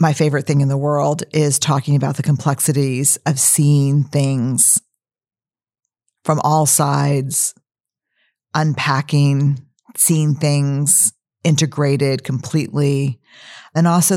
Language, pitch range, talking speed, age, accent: English, 140-155 Hz, 100 wpm, 50-69, American